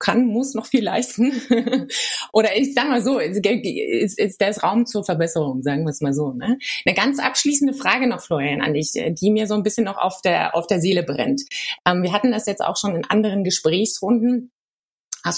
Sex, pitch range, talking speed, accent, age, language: female, 170-235 Hz, 215 wpm, German, 20-39, German